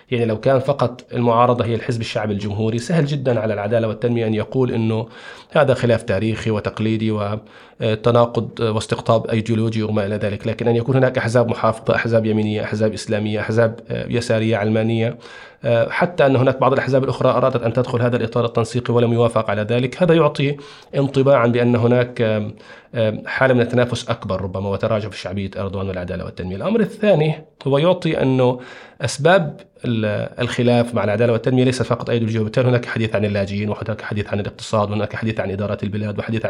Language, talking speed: Arabic, 165 wpm